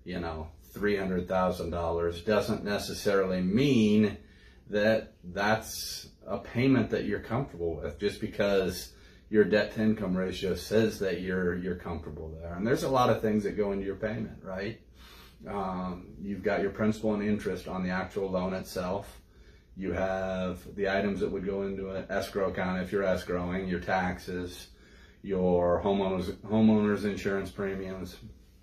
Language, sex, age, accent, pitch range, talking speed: English, male, 30-49, American, 90-100 Hz, 150 wpm